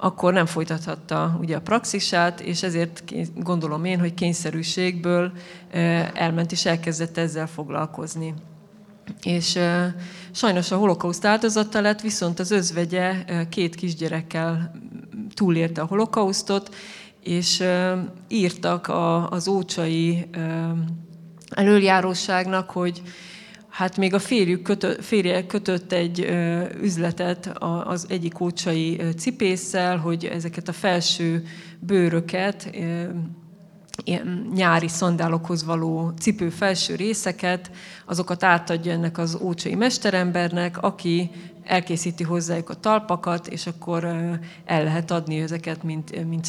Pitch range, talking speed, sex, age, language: 170-190 Hz, 100 wpm, female, 30-49, Hungarian